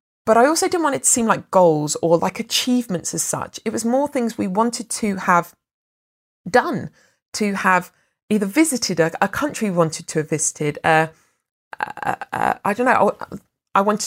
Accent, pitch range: British, 165-245 Hz